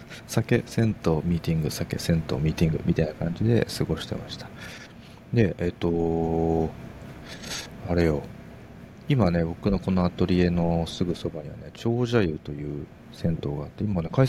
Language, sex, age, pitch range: Japanese, male, 40-59, 85-130 Hz